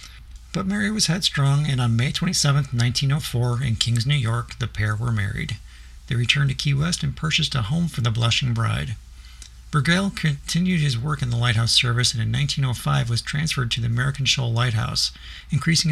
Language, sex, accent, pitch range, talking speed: English, male, American, 115-145 Hz, 185 wpm